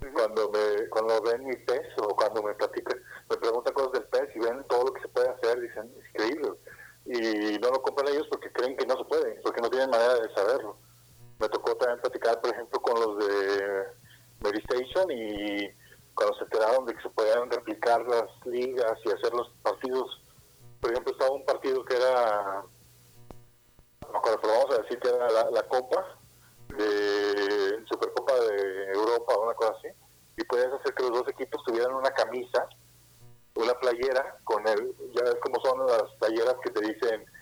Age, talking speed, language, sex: 30-49, 190 wpm, Spanish, male